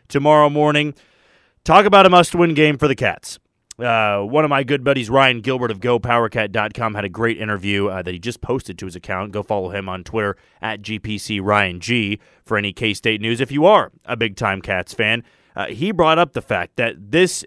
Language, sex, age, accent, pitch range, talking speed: English, male, 30-49, American, 105-145 Hz, 205 wpm